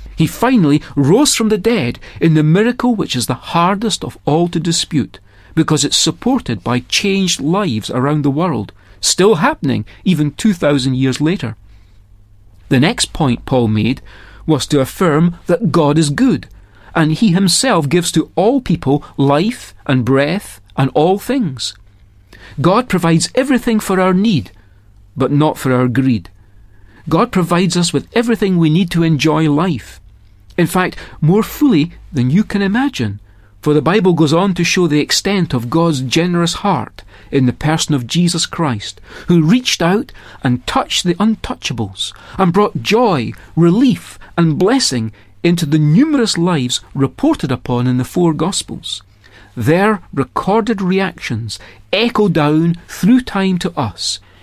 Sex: male